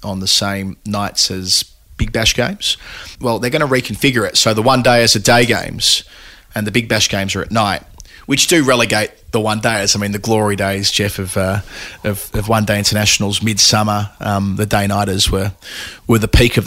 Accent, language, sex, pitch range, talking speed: Australian, English, male, 100-110 Hz, 195 wpm